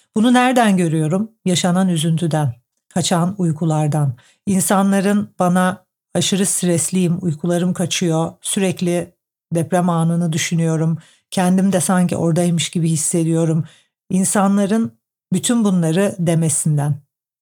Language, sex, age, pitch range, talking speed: Turkish, female, 50-69, 160-190 Hz, 95 wpm